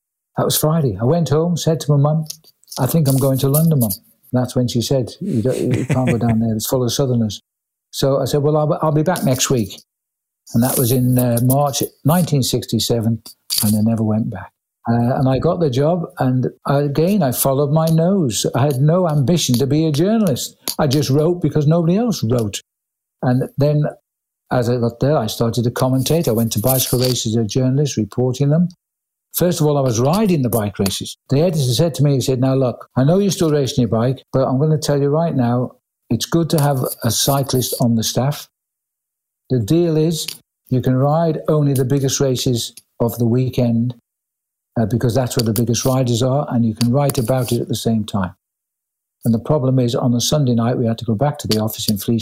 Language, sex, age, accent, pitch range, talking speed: English, male, 60-79, British, 120-150 Hz, 215 wpm